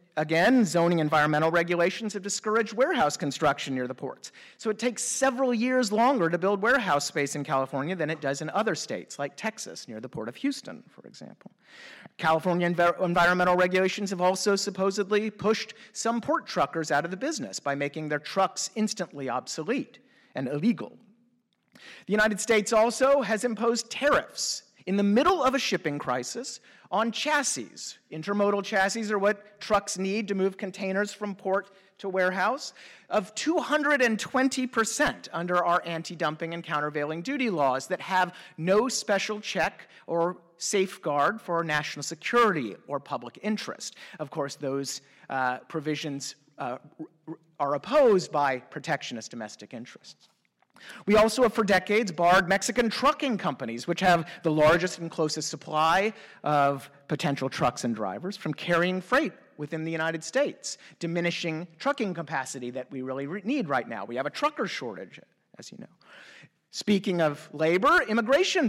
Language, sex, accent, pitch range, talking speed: English, male, American, 160-220 Hz, 150 wpm